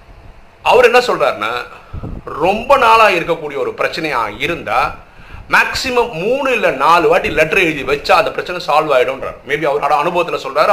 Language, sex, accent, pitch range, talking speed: Tamil, male, native, 155-245 Hz, 140 wpm